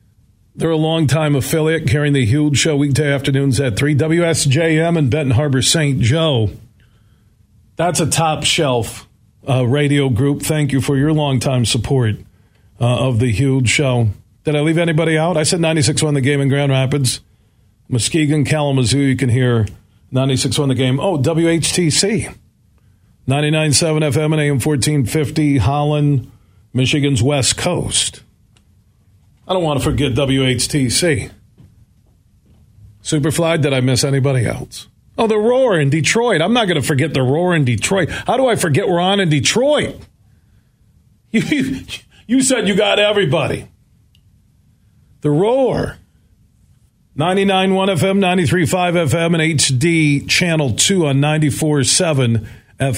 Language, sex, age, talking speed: English, male, 40-59, 135 wpm